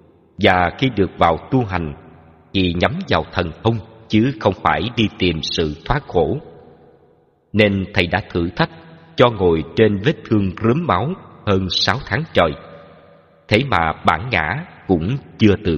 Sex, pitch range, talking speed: male, 80-105 Hz, 160 wpm